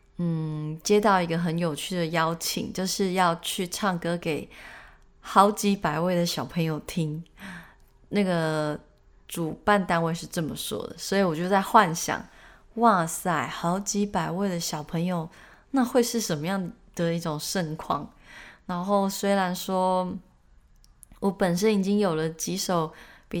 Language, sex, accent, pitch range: Chinese, female, native, 160-200 Hz